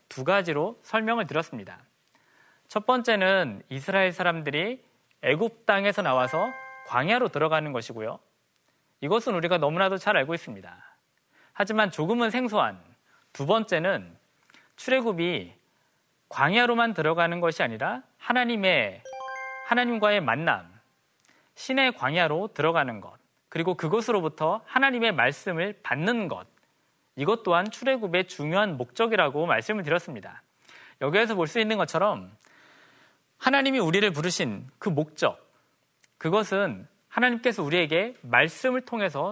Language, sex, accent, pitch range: Korean, male, native, 170-235 Hz